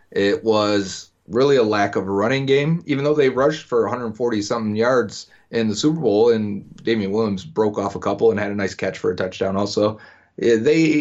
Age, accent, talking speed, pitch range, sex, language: 30-49, American, 200 wpm, 100-130 Hz, male, English